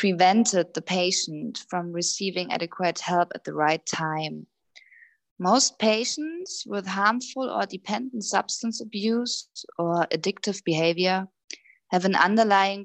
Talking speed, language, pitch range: 115 wpm, English, 175-215 Hz